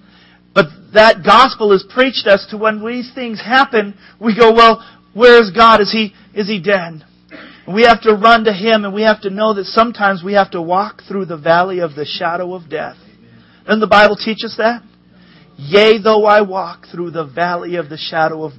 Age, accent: 40-59, American